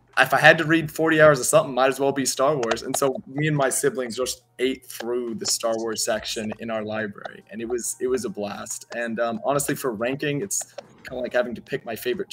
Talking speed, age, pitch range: 255 wpm, 20-39, 120-145 Hz